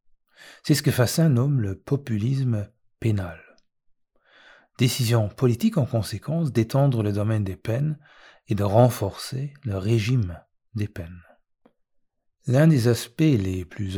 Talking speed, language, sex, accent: 125 wpm, French, male, French